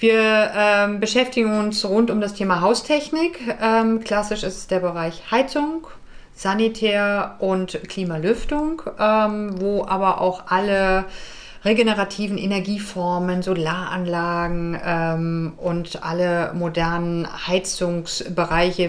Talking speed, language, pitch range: 100 wpm, German, 160-210 Hz